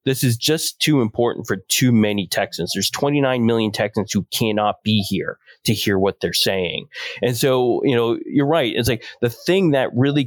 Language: English